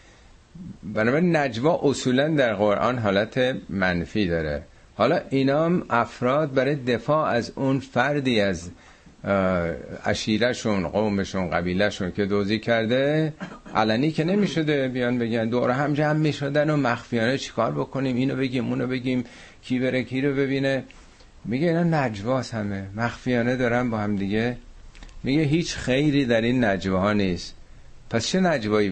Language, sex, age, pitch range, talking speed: Persian, male, 50-69, 95-130 Hz, 135 wpm